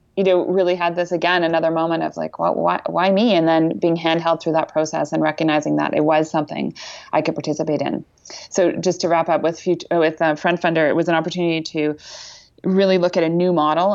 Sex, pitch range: female, 155-175 Hz